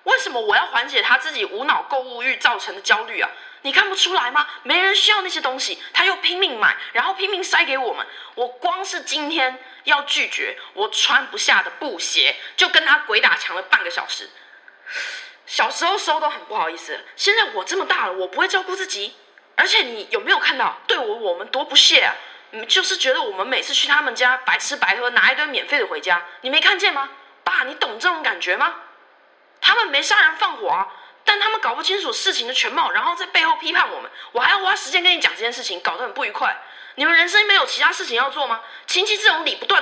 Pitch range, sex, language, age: 300-430 Hz, female, Chinese, 20-39